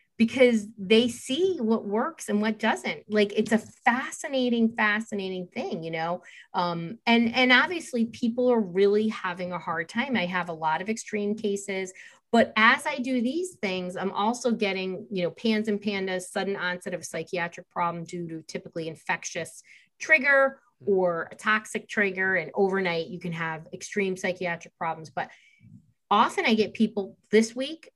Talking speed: 165 wpm